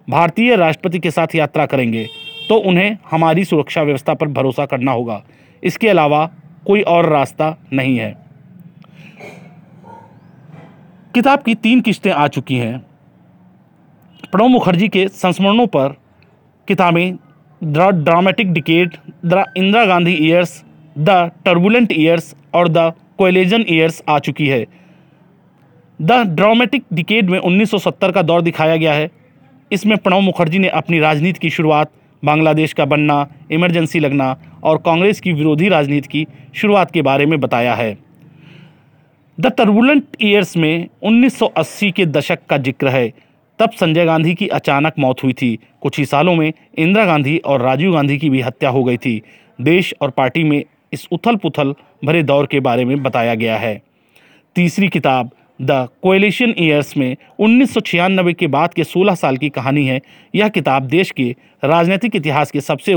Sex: male